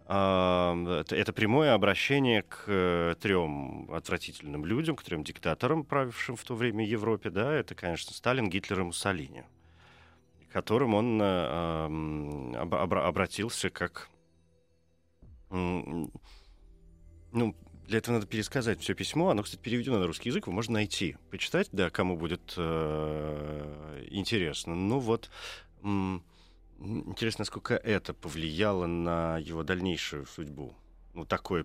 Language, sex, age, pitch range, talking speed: Russian, male, 40-59, 80-105 Hz, 135 wpm